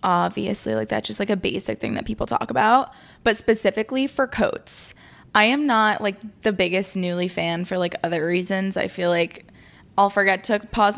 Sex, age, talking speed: female, 20-39, 190 wpm